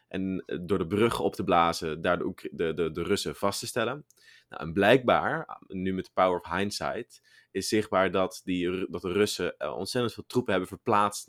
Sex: male